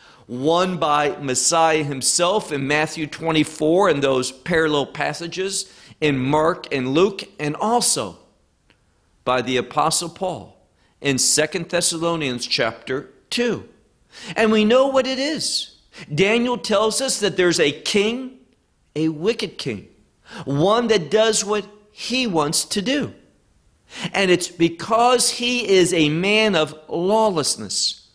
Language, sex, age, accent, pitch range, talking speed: English, male, 50-69, American, 130-200 Hz, 125 wpm